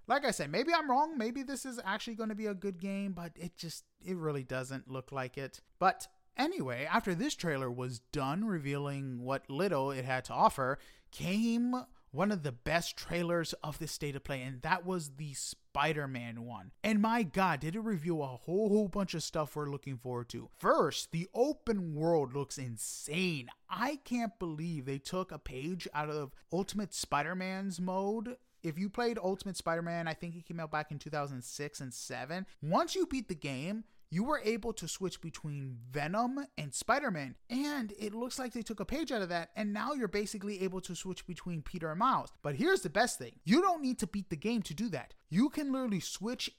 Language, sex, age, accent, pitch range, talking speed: English, male, 30-49, American, 150-225 Hz, 205 wpm